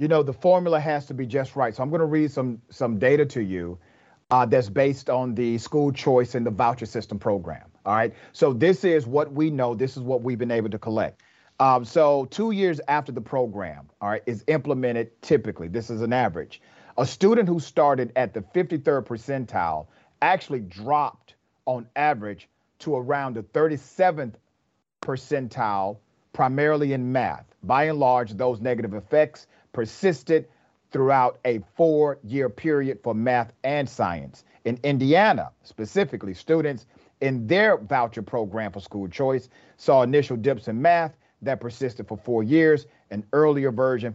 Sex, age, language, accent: male, 40-59, English, American